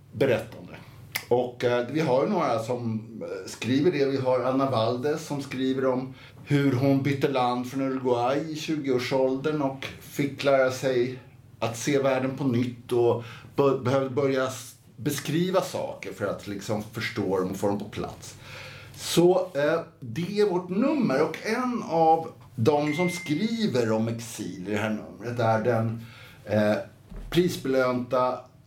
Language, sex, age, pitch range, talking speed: Swedish, male, 60-79, 120-155 Hz, 150 wpm